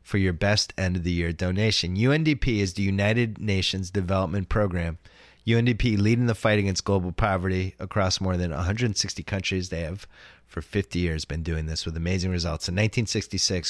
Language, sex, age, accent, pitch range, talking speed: English, male, 30-49, American, 85-105 Hz, 160 wpm